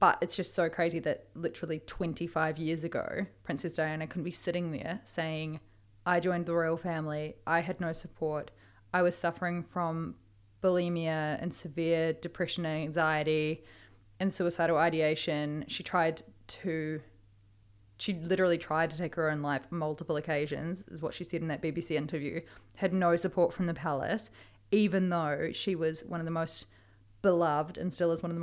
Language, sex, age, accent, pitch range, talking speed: English, female, 20-39, Australian, 155-205 Hz, 170 wpm